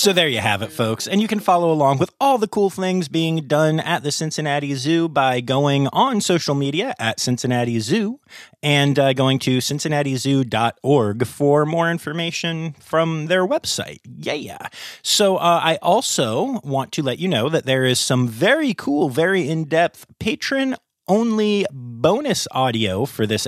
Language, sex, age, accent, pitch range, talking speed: English, male, 30-49, American, 130-180 Hz, 165 wpm